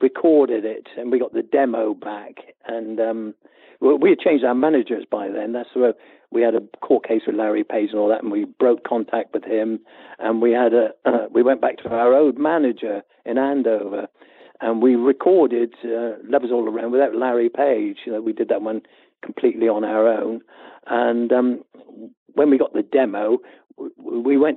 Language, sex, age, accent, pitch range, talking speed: English, male, 50-69, British, 115-165 Hz, 195 wpm